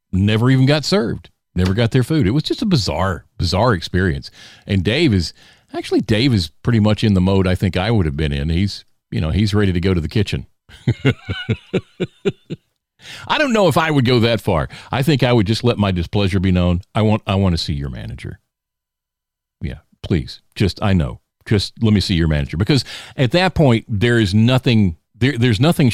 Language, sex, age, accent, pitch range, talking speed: English, male, 50-69, American, 90-115 Hz, 210 wpm